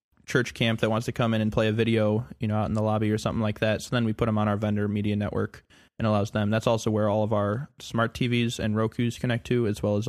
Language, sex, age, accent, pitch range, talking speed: English, male, 20-39, American, 105-115 Hz, 290 wpm